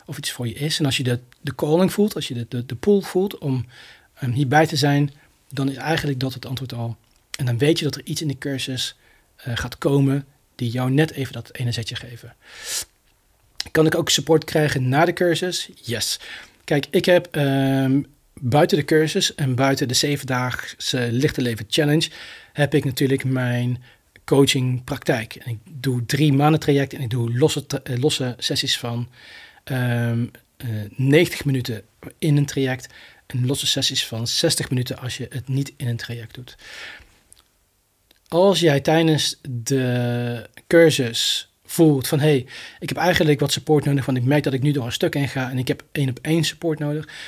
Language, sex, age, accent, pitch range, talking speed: Dutch, male, 40-59, Dutch, 125-150 Hz, 185 wpm